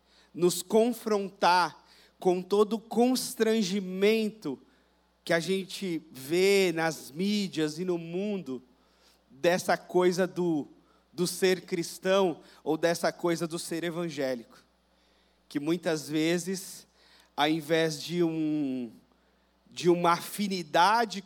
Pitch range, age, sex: 160-200 Hz, 40-59, male